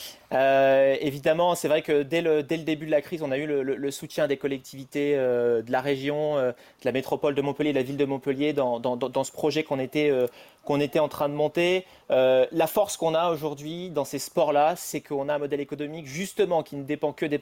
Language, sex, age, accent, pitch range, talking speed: French, male, 30-49, French, 140-160 Hz, 250 wpm